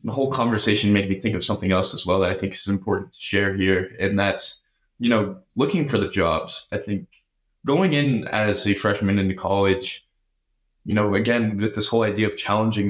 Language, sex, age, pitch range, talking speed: English, male, 20-39, 100-120 Hz, 210 wpm